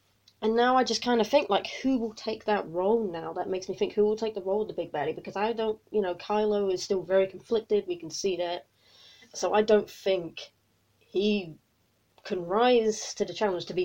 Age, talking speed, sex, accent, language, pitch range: 30-49, 230 wpm, female, British, English, 170-215 Hz